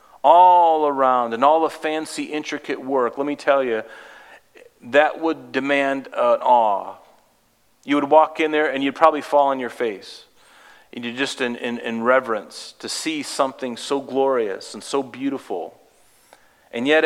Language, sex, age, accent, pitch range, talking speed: English, male, 40-59, American, 115-150 Hz, 160 wpm